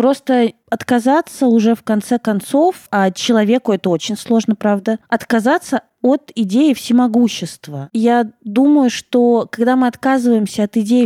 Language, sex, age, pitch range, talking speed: Russian, female, 20-39, 205-245 Hz, 130 wpm